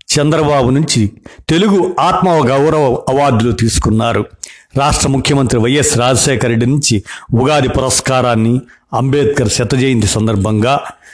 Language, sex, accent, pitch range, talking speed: Telugu, male, native, 105-130 Hz, 95 wpm